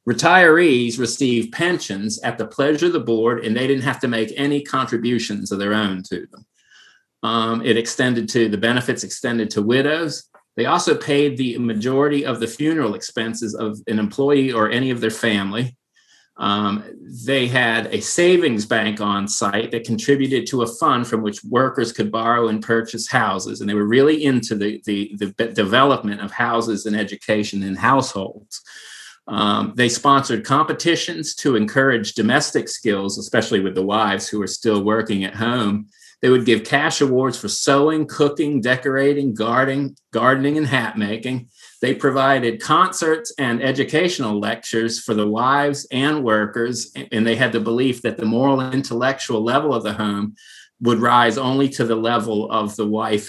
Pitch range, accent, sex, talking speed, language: 110-135 Hz, American, male, 170 wpm, English